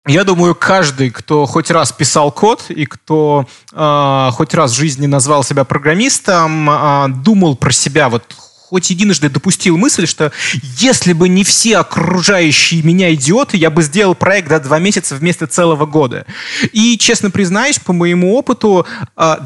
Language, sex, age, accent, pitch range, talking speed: Russian, male, 20-39, native, 150-195 Hz, 155 wpm